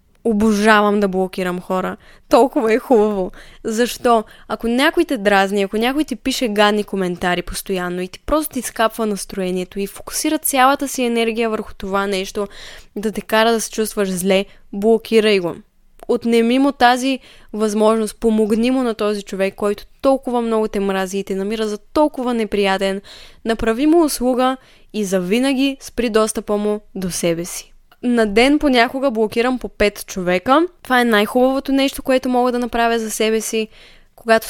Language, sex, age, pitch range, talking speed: Bulgarian, female, 20-39, 200-245 Hz, 160 wpm